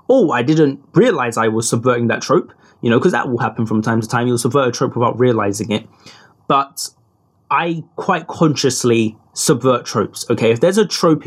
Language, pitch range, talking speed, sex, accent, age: English, 120-145 Hz, 195 wpm, male, British, 20-39